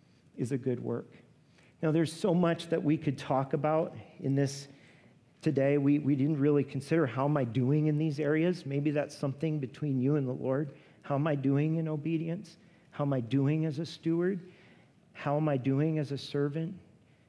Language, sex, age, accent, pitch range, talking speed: English, male, 40-59, American, 130-155 Hz, 195 wpm